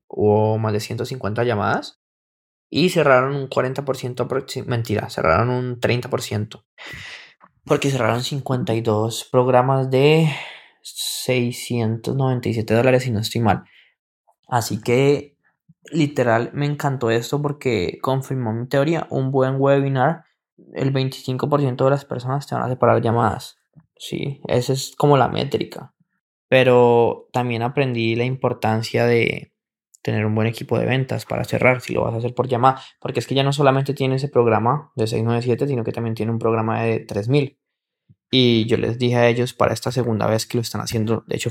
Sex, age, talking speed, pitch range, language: male, 20-39, 160 wpm, 110-130 Hz, Spanish